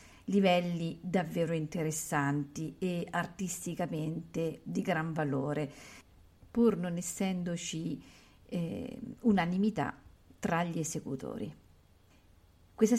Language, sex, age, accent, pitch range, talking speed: Italian, female, 50-69, native, 150-185 Hz, 80 wpm